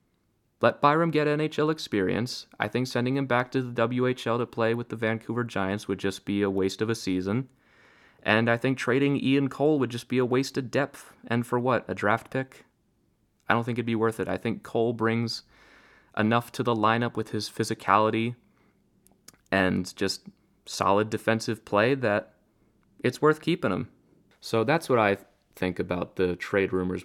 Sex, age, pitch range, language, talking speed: male, 30-49, 95-120 Hz, English, 185 wpm